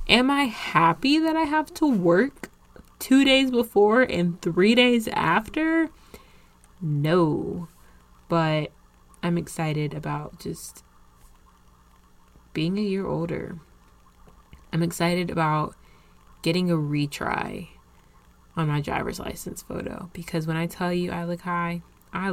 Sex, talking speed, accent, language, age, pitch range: female, 120 wpm, American, English, 20-39, 150-185 Hz